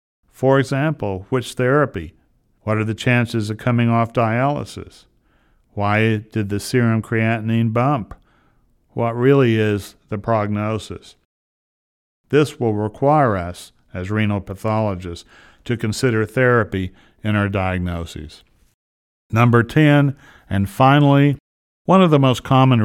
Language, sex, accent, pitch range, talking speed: English, male, American, 95-120 Hz, 120 wpm